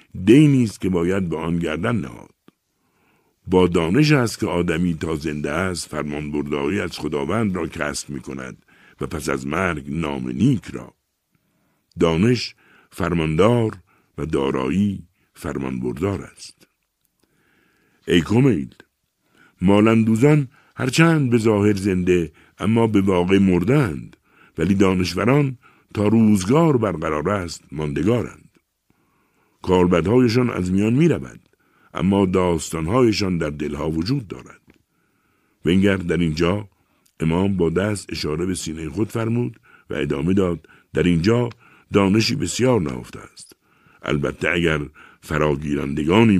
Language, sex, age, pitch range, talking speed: Persian, male, 60-79, 80-105 Hz, 115 wpm